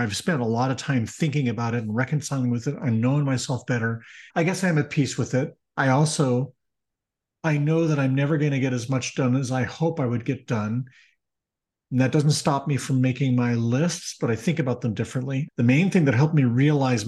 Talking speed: 230 wpm